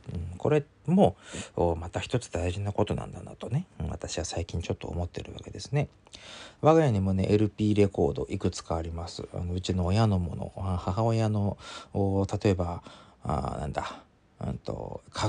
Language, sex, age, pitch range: Japanese, male, 40-59, 85-110 Hz